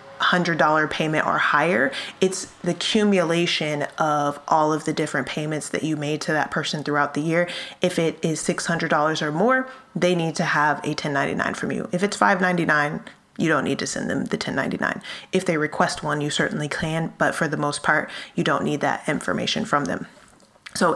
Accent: American